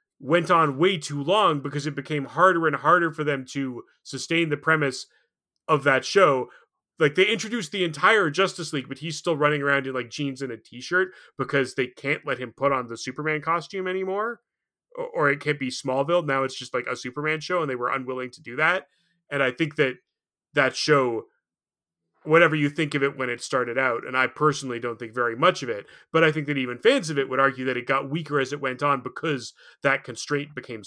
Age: 30-49